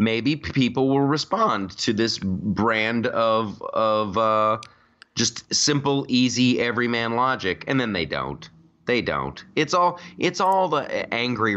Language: English